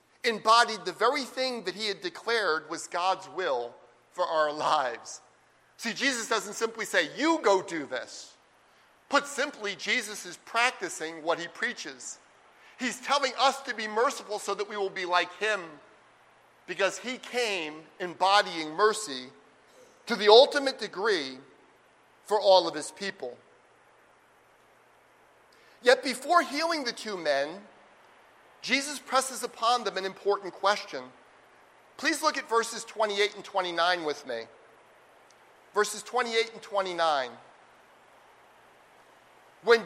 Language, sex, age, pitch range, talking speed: English, male, 40-59, 190-255 Hz, 130 wpm